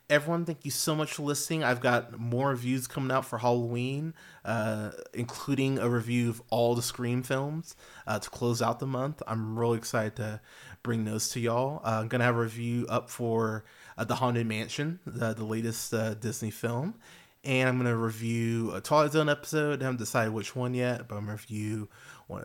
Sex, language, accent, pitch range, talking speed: male, English, American, 115-135 Hz, 205 wpm